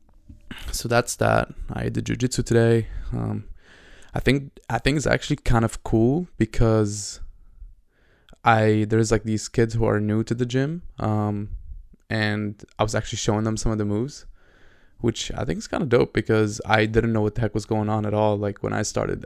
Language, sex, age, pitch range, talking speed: English, male, 20-39, 105-115 Hz, 195 wpm